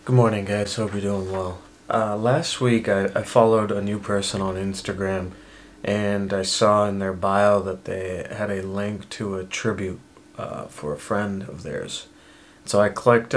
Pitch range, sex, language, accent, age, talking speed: 95-110 Hz, male, English, American, 30-49, 185 wpm